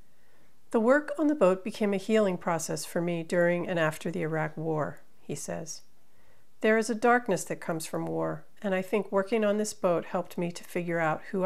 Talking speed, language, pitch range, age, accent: 210 wpm, English, 170-205 Hz, 50-69, American